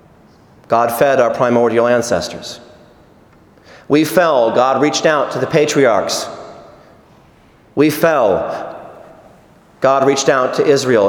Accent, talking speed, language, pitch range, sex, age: American, 110 wpm, English, 125-190 Hz, male, 40-59